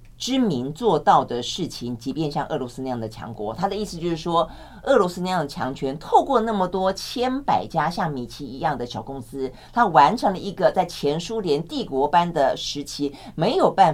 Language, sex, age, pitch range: Chinese, female, 40-59, 130-205 Hz